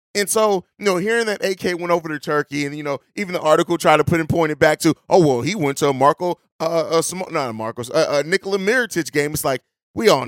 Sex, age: male, 30-49